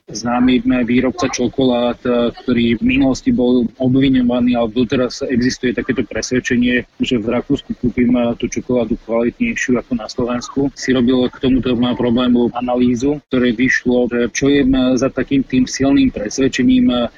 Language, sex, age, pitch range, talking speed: Slovak, male, 30-49, 120-130 Hz, 135 wpm